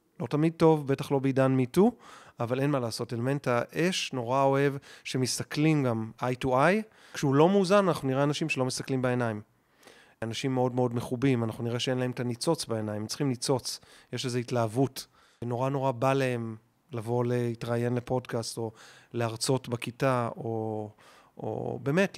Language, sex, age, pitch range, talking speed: Hebrew, male, 30-49, 120-145 Hz, 155 wpm